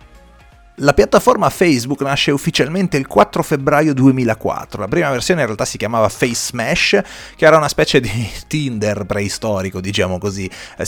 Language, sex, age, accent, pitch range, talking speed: Italian, male, 30-49, native, 105-140 Hz, 155 wpm